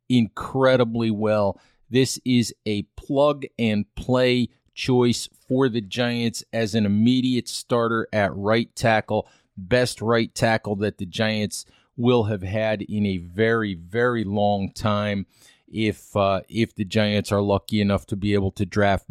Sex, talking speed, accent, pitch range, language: male, 150 wpm, American, 105-125 Hz, English